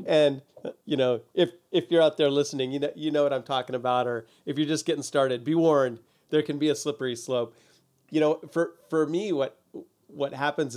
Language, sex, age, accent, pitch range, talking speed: English, male, 40-59, American, 115-145 Hz, 215 wpm